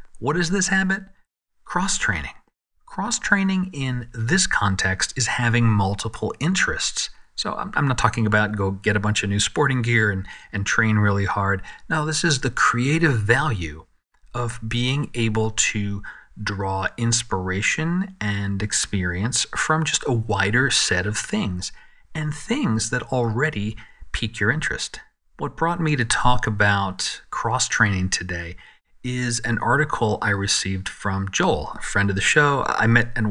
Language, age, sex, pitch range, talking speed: English, 40-59, male, 100-135 Hz, 150 wpm